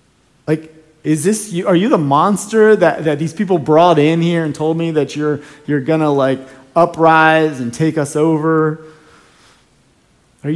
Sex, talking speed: male, 165 wpm